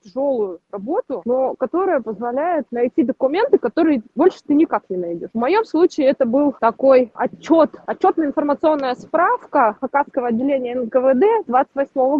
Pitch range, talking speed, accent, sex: 230-285 Hz, 130 wpm, native, female